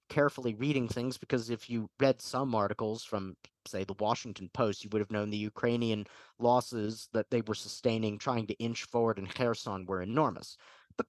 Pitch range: 115-145 Hz